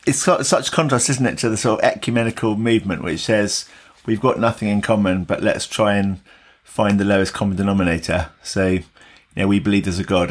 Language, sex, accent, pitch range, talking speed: English, male, British, 95-110 Hz, 205 wpm